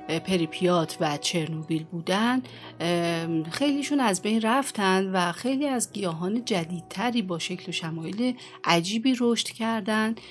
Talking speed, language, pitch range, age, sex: 115 wpm, Persian, 170-220 Hz, 30-49, female